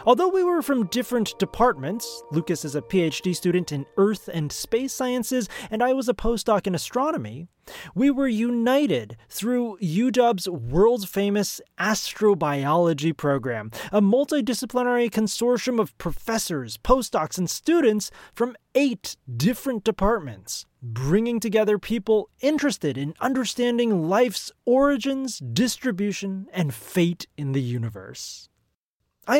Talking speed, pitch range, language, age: 120 wpm, 150-235 Hz, English, 30-49